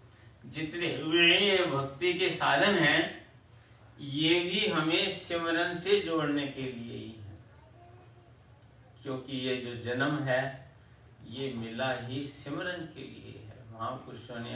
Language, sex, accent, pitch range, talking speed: Hindi, male, native, 120-165 Hz, 130 wpm